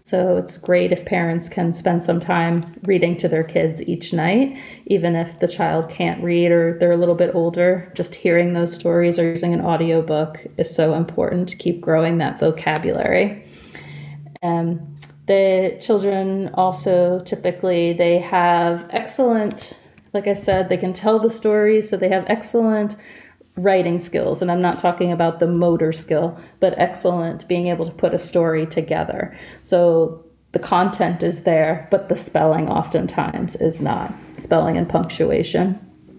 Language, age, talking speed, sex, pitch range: English, 30-49, 160 wpm, female, 170-185 Hz